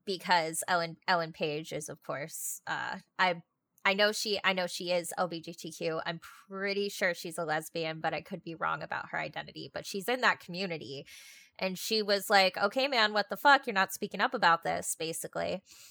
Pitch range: 175-225 Hz